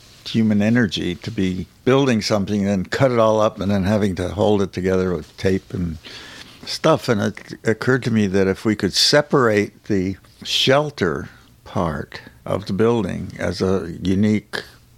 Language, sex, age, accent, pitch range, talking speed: English, male, 60-79, American, 95-115 Hz, 170 wpm